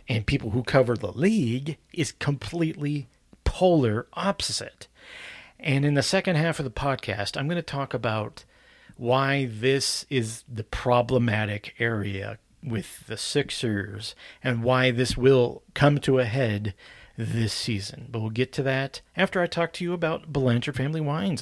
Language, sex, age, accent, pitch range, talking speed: English, male, 40-59, American, 110-145 Hz, 155 wpm